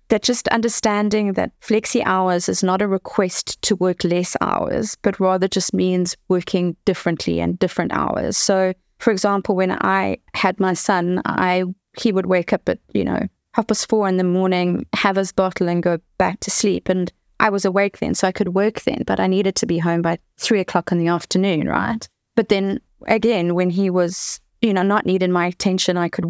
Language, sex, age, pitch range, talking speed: English, female, 20-39, 175-205 Hz, 205 wpm